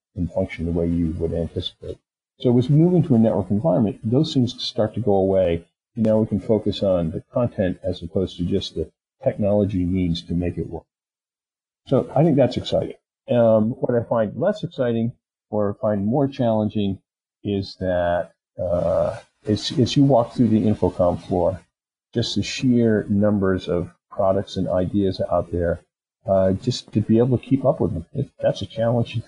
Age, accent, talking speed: 50-69, American, 180 wpm